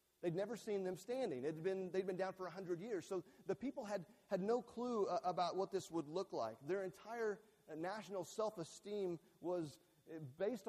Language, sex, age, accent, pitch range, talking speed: English, male, 40-59, American, 175-210 Hz, 190 wpm